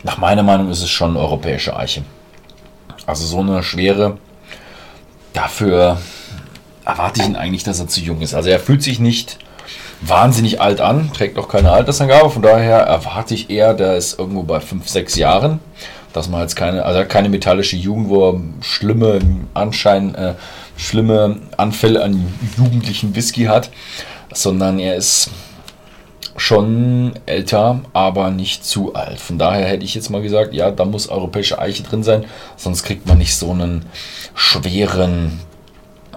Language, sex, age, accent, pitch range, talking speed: German, male, 40-59, German, 95-130 Hz, 160 wpm